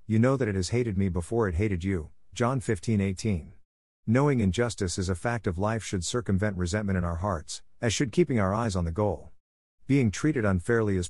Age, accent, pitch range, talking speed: 50-69, American, 90-115 Hz, 210 wpm